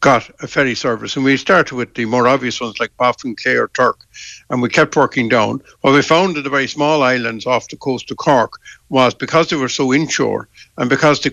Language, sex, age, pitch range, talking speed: English, male, 60-79, 125-155 Hz, 240 wpm